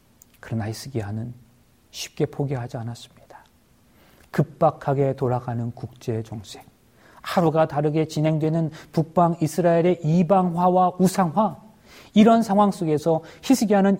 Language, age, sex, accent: Korean, 40-59, male, native